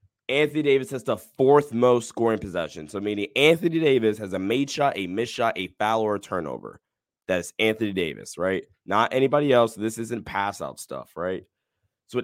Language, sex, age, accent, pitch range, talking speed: English, male, 20-39, American, 100-130 Hz, 190 wpm